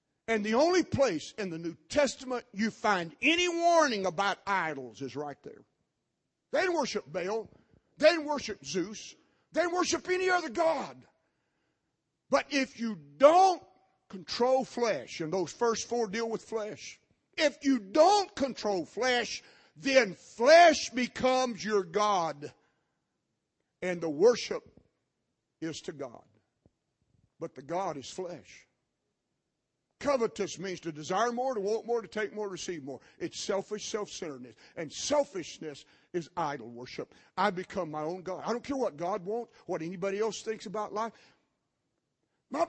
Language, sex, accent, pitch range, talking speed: English, male, American, 185-285 Hz, 145 wpm